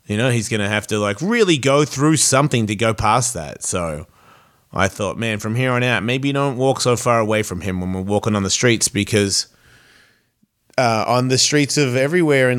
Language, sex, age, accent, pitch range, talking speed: English, male, 30-49, Australian, 105-125 Hz, 215 wpm